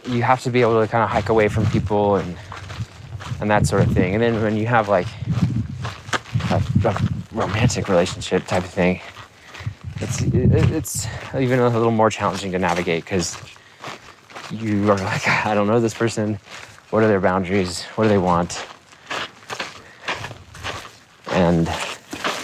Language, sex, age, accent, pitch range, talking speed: English, male, 20-39, American, 95-115 Hz, 160 wpm